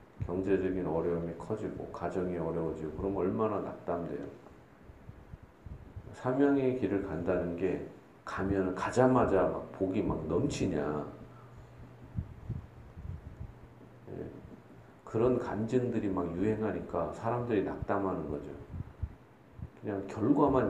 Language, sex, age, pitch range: Korean, male, 40-59, 85-115 Hz